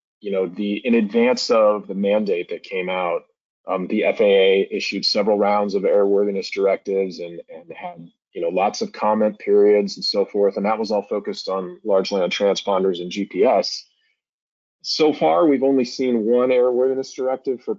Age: 30-49